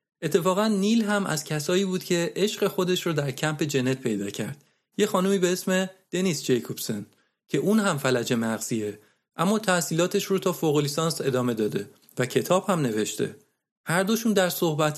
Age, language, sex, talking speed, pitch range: 40-59, Persian, male, 165 wpm, 135-190 Hz